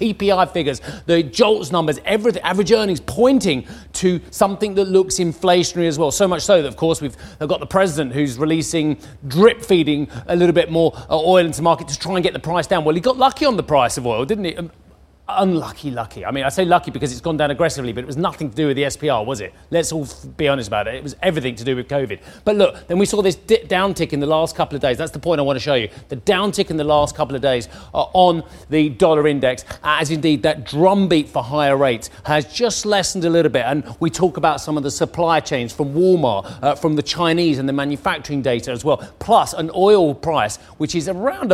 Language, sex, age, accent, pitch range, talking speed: English, male, 30-49, British, 145-185 Hz, 240 wpm